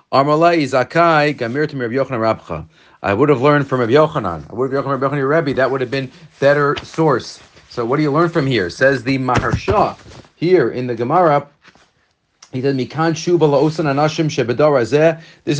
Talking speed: 130 wpm